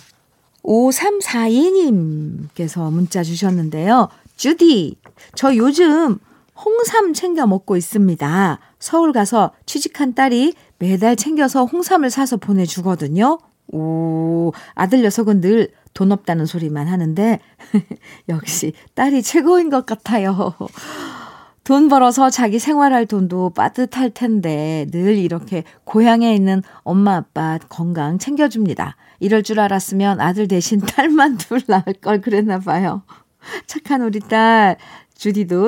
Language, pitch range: Korean, 175-255 Hz